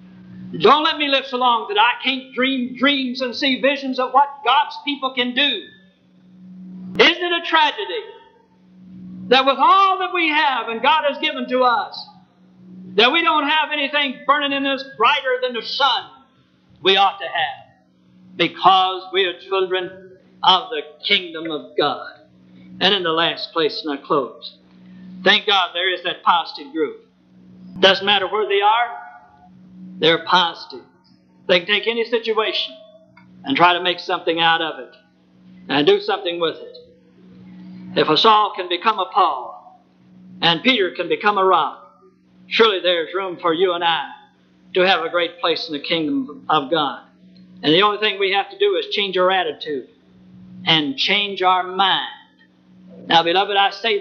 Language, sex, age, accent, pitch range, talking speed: English, male, 50-69, American, 170-260 Hz, 170 wpm